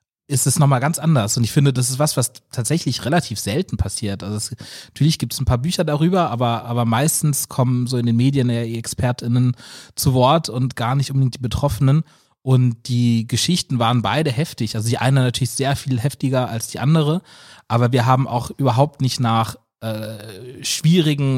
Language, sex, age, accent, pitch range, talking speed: German, male, 30-49, German, 115-135 Hz, 190 wpm